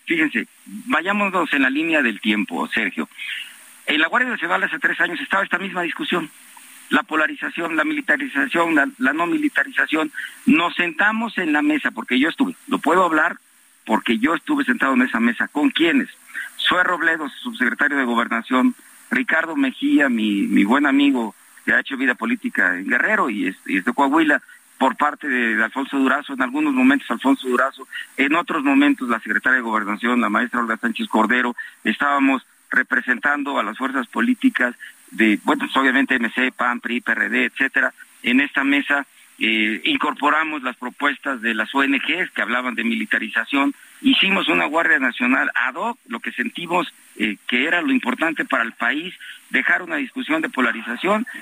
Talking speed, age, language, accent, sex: 165 wpm, 50-69, Spanish, Mexican, male